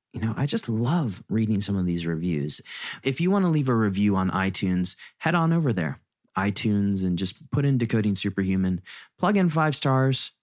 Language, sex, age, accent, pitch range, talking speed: English, male, 30-49, American, 95-135 Hz, 195 wpm